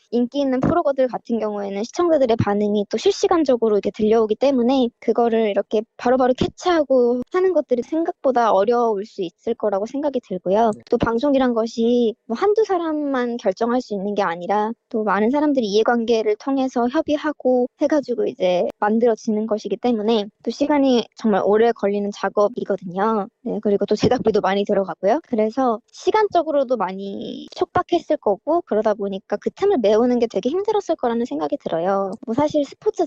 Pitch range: 215-275 Hz